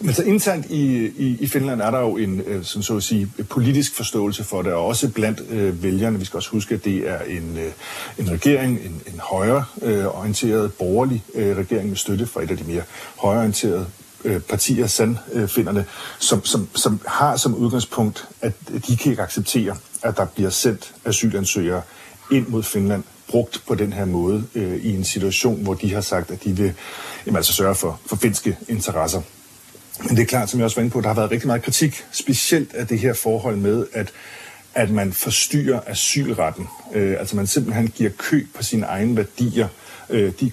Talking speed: 205 wpm